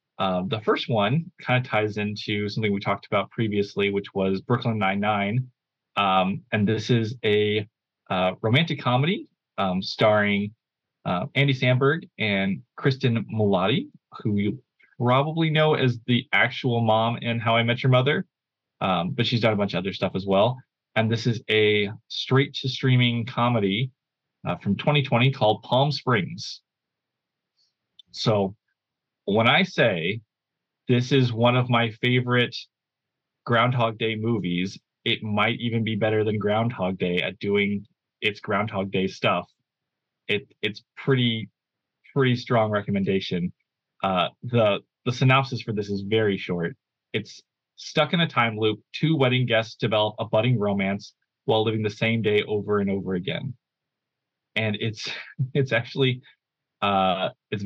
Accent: American